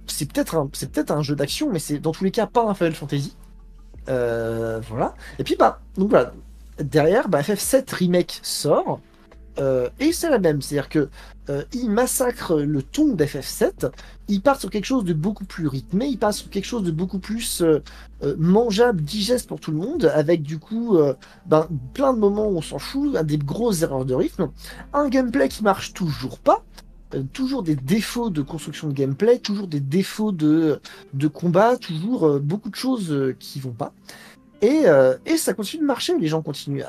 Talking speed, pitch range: 200 wpm, 145-225 Hz